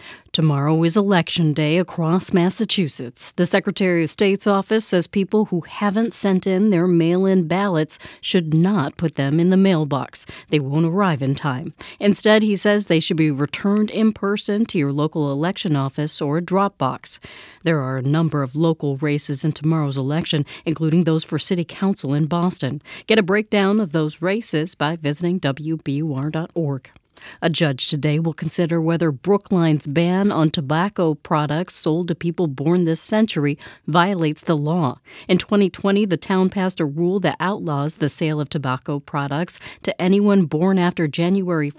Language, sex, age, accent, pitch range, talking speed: English, female, 40-59, American, 150-185 Hz, 165 wpm